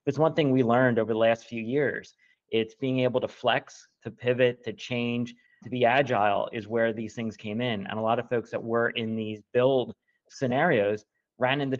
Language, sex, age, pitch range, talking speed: English, male, 30-49, 115-130 Hz, 210 wpm